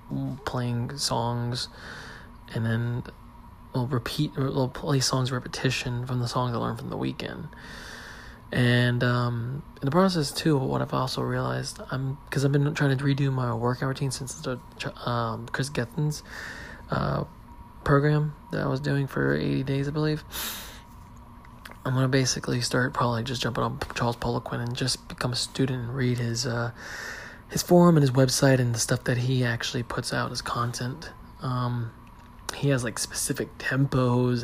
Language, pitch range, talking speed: English, 120-135 Hz, 160 wpm